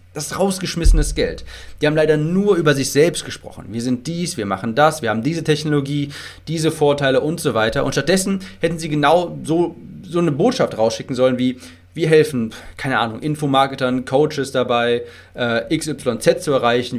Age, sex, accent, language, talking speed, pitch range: 30-49, male, German, German, 175 wpm, 95-155 Hz